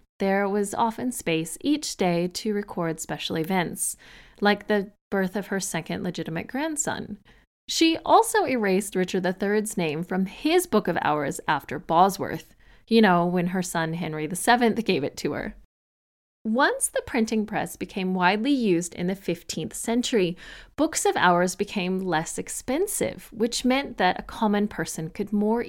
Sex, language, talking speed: female, English, 155 wpm